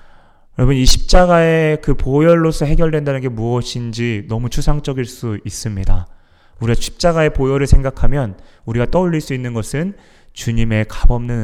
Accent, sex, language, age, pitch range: native, male, Korean, 20-39, 105-130 Hz